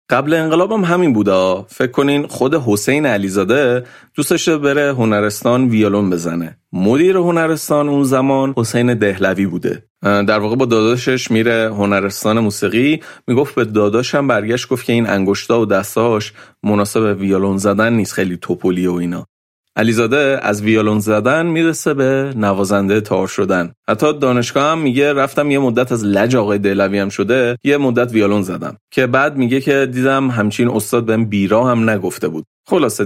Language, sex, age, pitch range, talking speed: Persian, male, 30-49, 100-135 Hz, 155 wpm